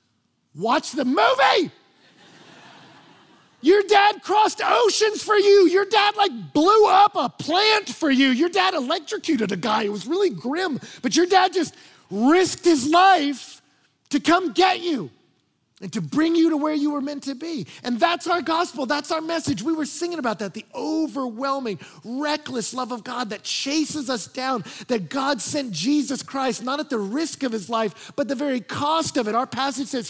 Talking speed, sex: 185 wpm, male